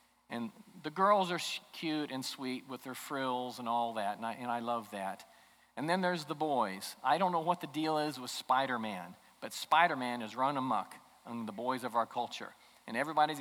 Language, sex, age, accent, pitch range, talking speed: English, male, 40-59, American, 130-180 Hz, 205 wpm